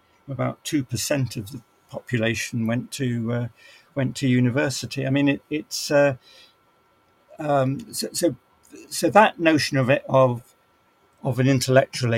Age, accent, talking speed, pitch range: 50-69, British, 145 wpm, 120-165 Hz